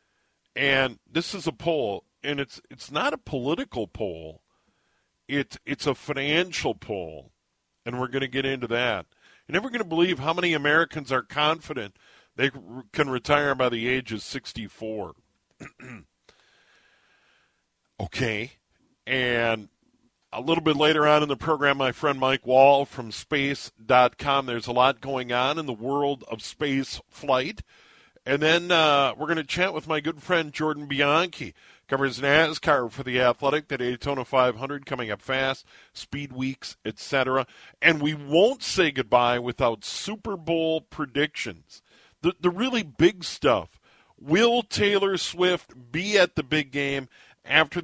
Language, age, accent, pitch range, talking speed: English, 50-69, American, 125-155 Hz, 155 wpm